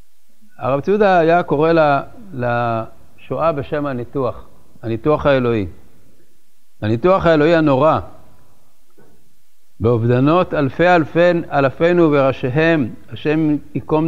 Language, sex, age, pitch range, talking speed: Hebrew, male, 60-79, 120-165 Hz, 80 wpm